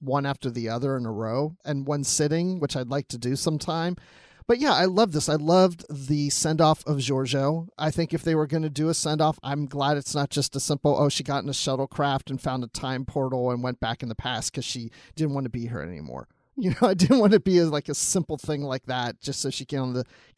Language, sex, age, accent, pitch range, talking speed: English, male, 40-59, American, 135-170 Hz, 275 wpm